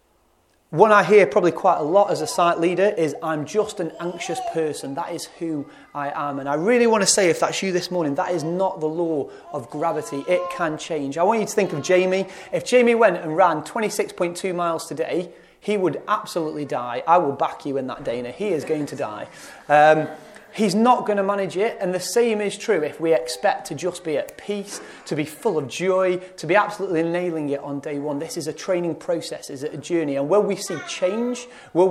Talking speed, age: 230 wpm, 30-49